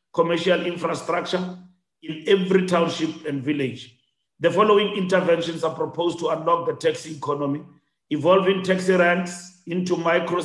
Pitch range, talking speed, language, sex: 160-185 Hz, 125 wpm, English, male